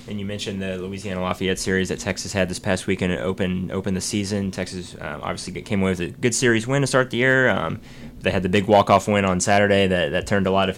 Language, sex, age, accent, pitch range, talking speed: English, male, 20-39, American, 90-105 Hz, 260 wpm